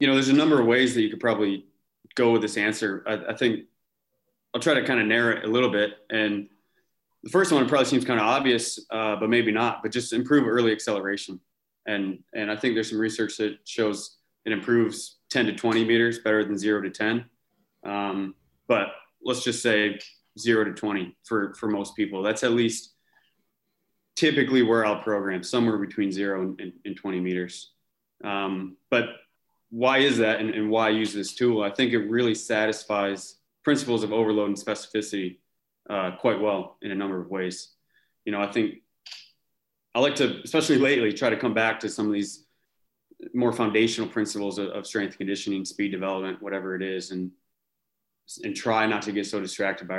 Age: 20-39